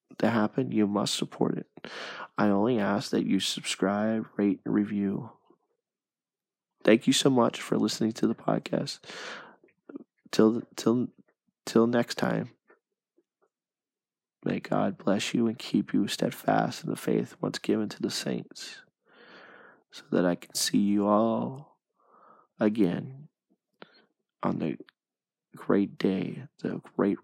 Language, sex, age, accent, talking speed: English, male, 20-39, American, 125 wpm